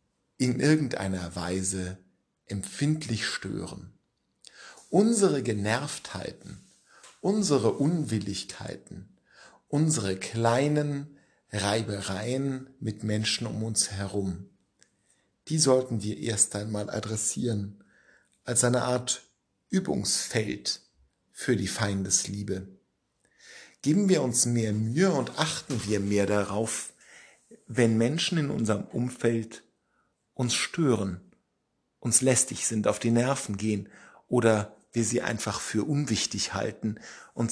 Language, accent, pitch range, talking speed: German, German, 100-125 Hz, 100 wpm